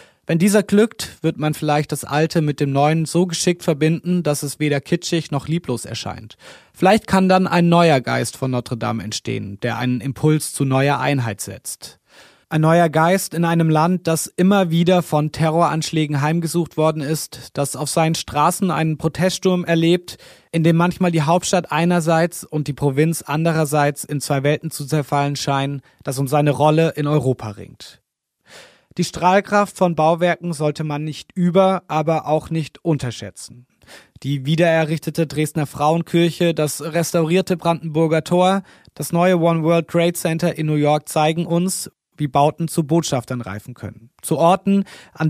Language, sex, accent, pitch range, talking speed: German, male, German, 145-170 Hz, 160 wpm